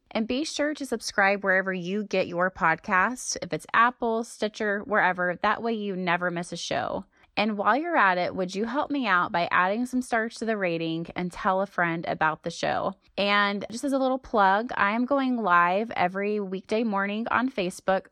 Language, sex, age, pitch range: English, female, 20-39, 180-225 Hz